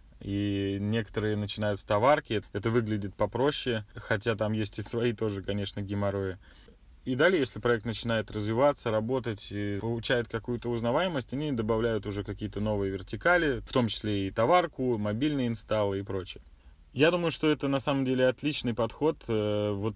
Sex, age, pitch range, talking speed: male, 20-39, 105-130 Hz, 155 wpm